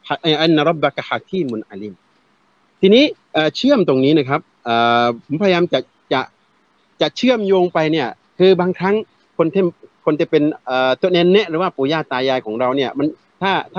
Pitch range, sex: 140-195 Hz, male